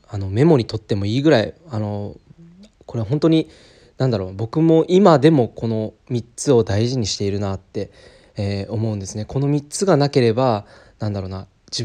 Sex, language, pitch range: male, Japanese, 105-145 Hz